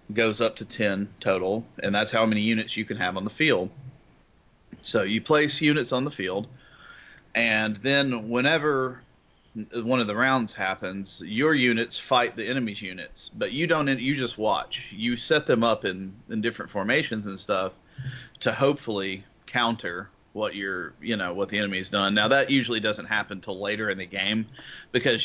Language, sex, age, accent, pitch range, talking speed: English, male, 30-49, American, 100-120 Hz, 180 wpm